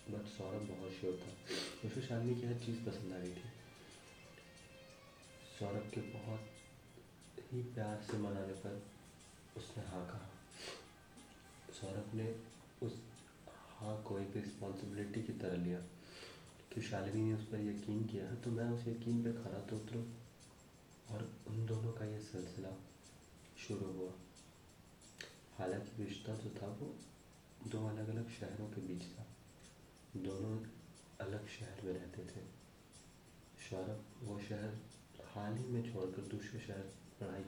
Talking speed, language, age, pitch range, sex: 135 wpm, Hindi, 30-49, 95-115 Hz, male